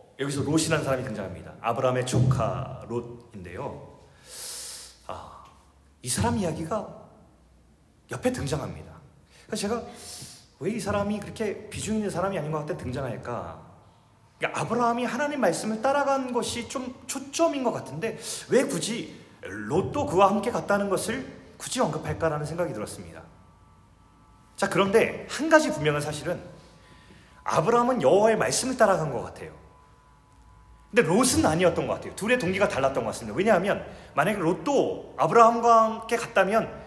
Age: 30-49